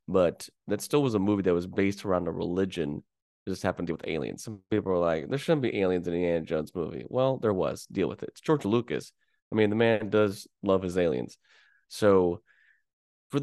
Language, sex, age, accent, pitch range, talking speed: English, male, 20-39, American, 90-120 Hz, 230 wpm